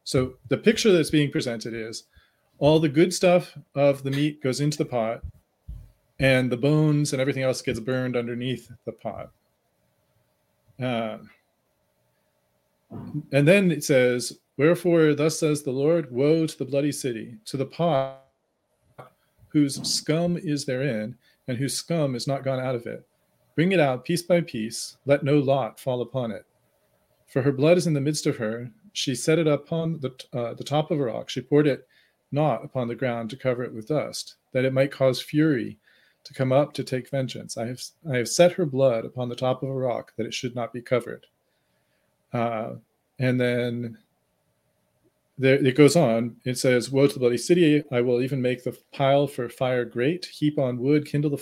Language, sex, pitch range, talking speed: English, male, 120-150 Hz, 190 wpm